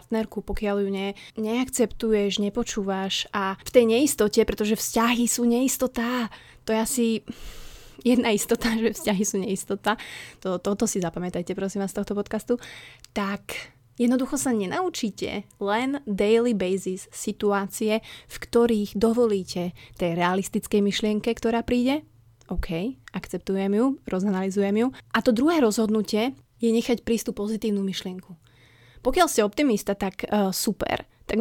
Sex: female